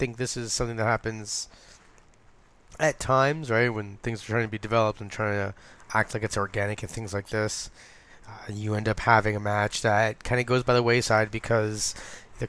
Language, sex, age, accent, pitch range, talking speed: English, male, 20-39, American, 105-120 Hz, 205 wpm